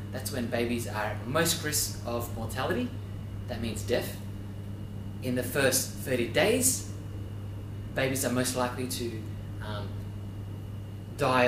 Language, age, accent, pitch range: English, 30-49, Australian, 100-125 Hz